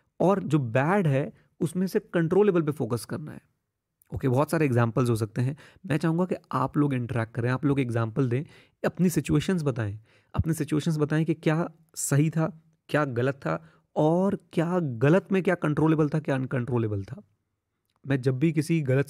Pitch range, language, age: 120-155 Hz, Hindi, 30-49